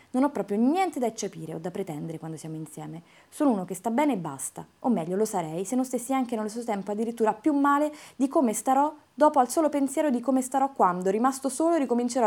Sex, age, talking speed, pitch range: female, 20-39, 230 wpm, 175-245 Hz